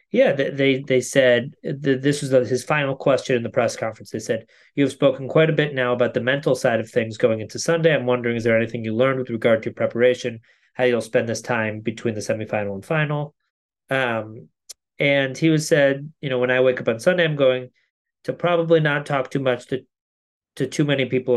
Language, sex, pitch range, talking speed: English, male, 120-140 Hz, 220 wpm